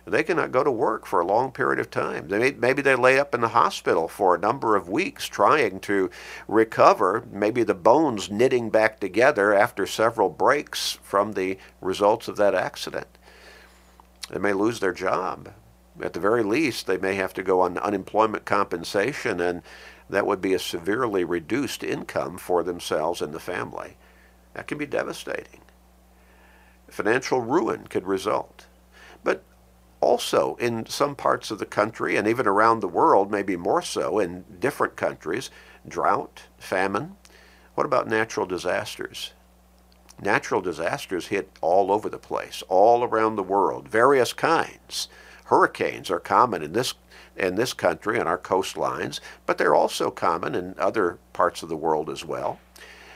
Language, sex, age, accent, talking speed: English, male, 50-69, American, 160 wpm